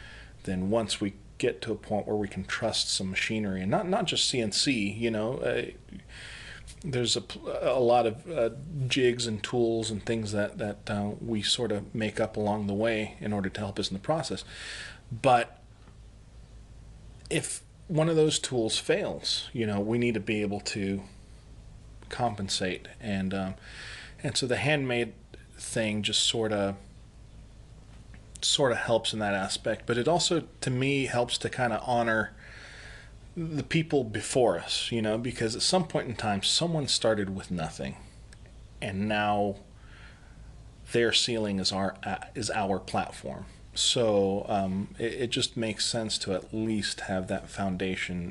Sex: male